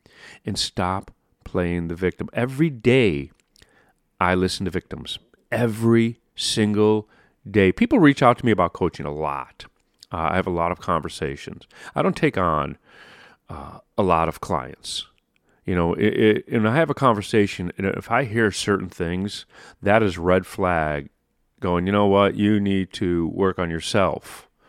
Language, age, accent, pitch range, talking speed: English, 40-59, American, 90-115 Hz, 160 wpm